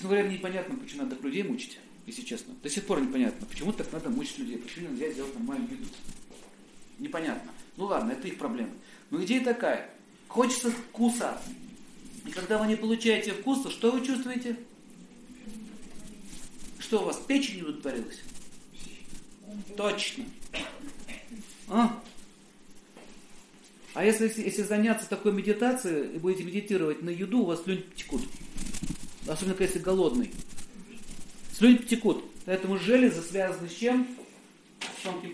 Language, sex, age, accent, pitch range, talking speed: Russian, male, 50-69, native, 200-250 Hz, 130 wpm